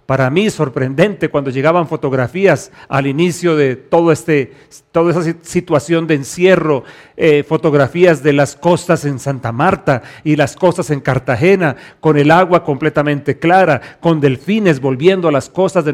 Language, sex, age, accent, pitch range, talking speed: English, male, 40-59, Mexican, 145-190 Hz, 145 wpm